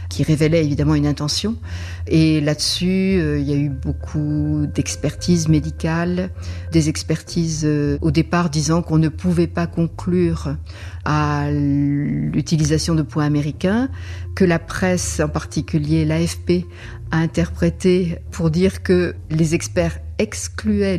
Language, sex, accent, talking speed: French, female, French, 130 wpm